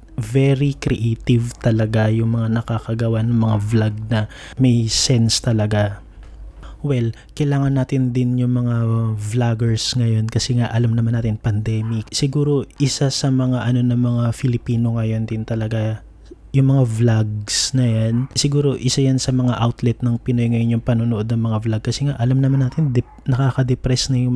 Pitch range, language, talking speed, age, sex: 115-130 Hz, Filipino, 165 wpm, 20-39, male